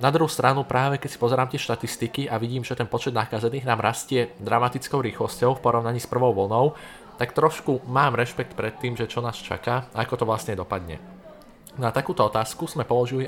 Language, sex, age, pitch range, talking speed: Slovak, male, 20-39, 105-130 Hz, 195 wpm